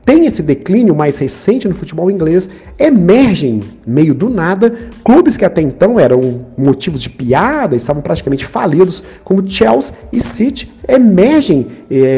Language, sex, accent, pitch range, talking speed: Portuguese, male, Brazilian, 125-190 Hz, 150 wpm